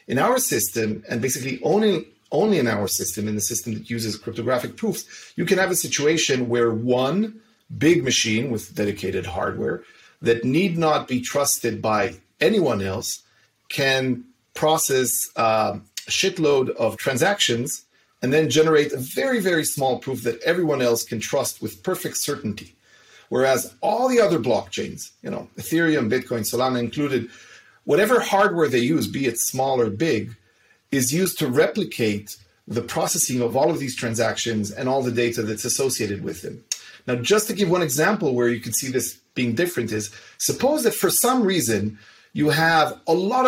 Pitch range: 115-160 Hz